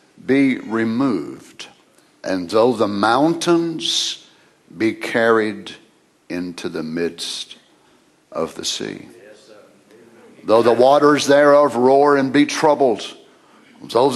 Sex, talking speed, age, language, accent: male, 100 wpm, 60-79, English, American